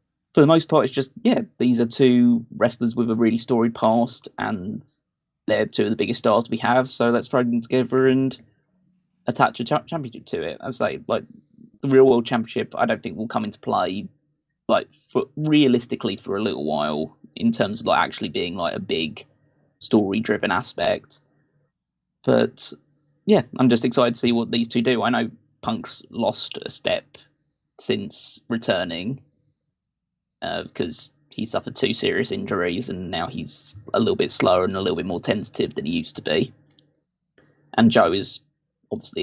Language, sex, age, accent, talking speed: English, male, 20-39, British, 180 wpm